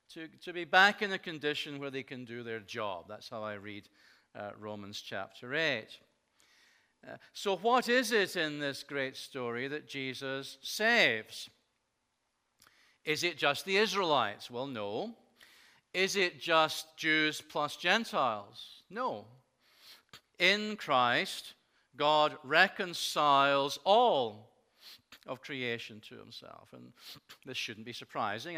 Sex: male